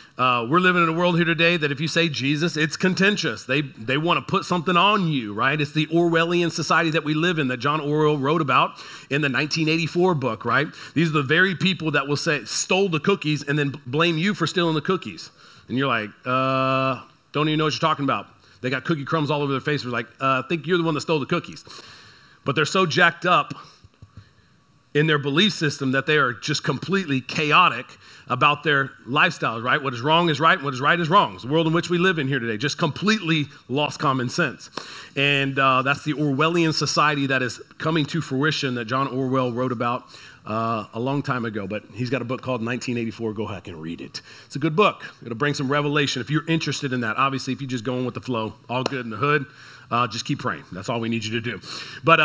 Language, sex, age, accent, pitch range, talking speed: English, male, 40-59, American, 130-165 Hz, 240 wpm